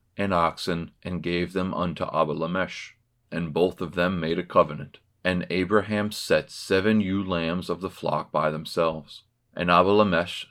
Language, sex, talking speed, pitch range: English, male, 155 wpm, 80-100 Hz